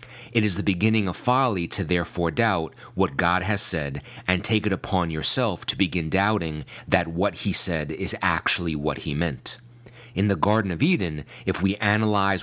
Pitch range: 85-110 Hz